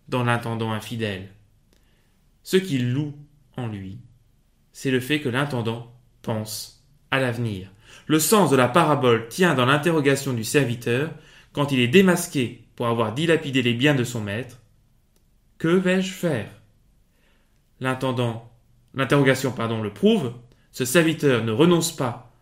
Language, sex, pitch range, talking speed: French, male, 115-145 Hz, 140 wpm